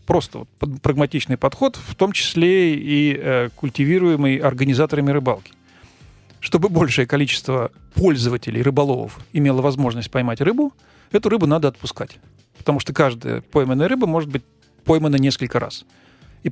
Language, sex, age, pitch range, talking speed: Russian, male, 40-59, 125-155 Hz, 125 wpm